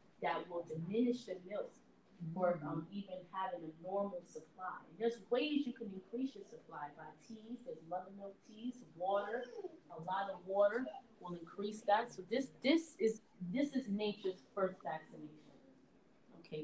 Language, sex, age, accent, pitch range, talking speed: English, female, 20-39, American, 175-220 Hz, 160 wpm